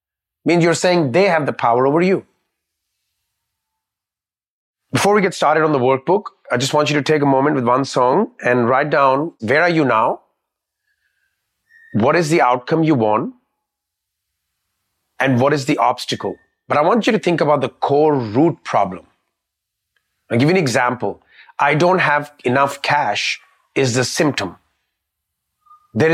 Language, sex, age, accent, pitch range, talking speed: English, male, 30-49, Indian, 105-160 Hz, 160 wpm